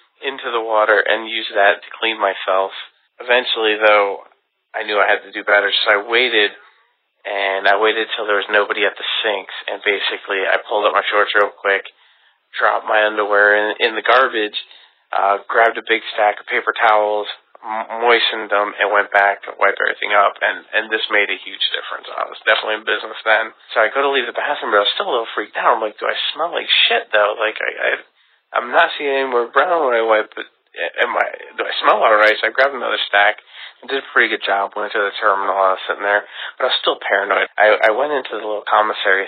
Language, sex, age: English, male, 30-49